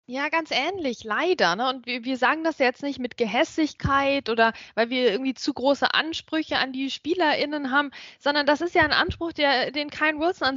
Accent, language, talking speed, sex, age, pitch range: German, German, 210 wpm, female, 20-39, 250-315 Hz